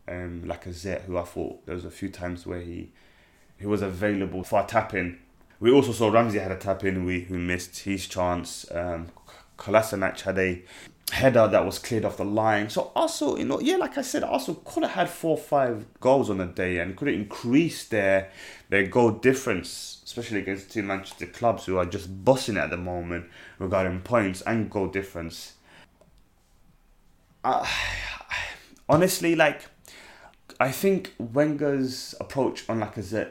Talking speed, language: 170 wpm, English